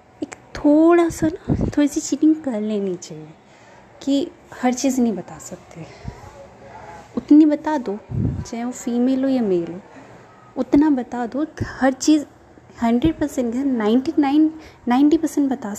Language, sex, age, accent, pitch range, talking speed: Hindi, female, 20-39, native, 225-295 Hz, 135 wpm